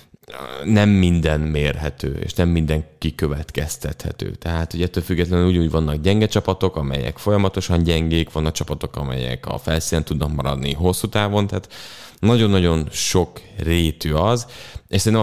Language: English